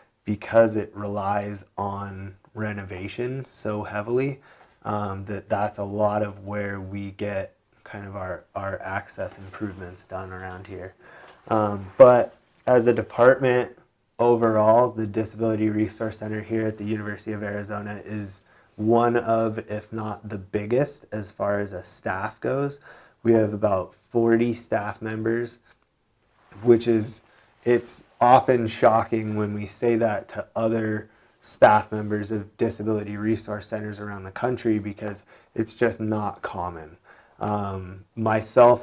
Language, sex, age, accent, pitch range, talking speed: English, male, 20-39, American, 100-115 Hz, 135 wpm